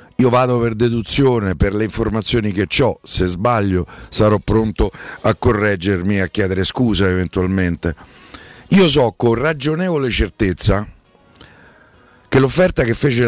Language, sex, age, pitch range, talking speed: Italian, male, 50-69, 95-130 Hz, 125 wpm